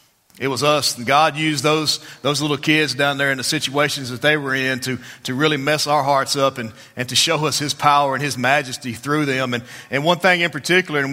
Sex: male